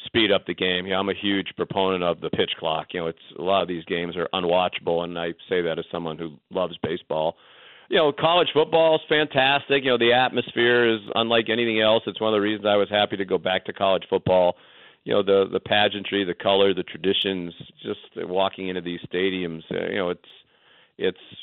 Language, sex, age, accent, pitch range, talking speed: English, male, 50-69, American, 100-115 Hz, 220 wpm